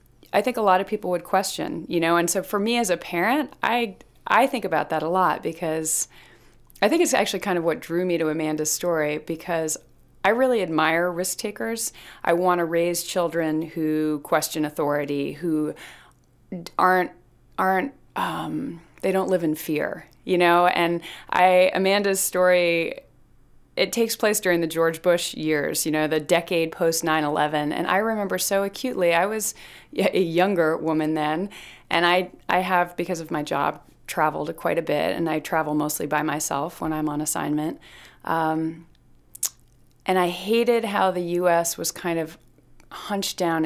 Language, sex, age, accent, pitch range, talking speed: English, female, 30-49, American, 155-185 Hz, 170 wpm